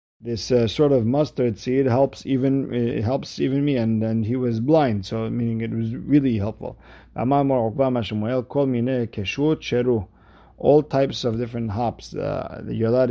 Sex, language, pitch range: male, English, 105-130 Hz